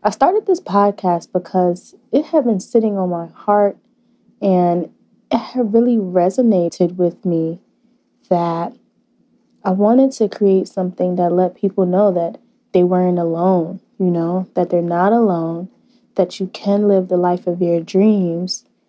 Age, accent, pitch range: 20-39, American, 185-240 Hz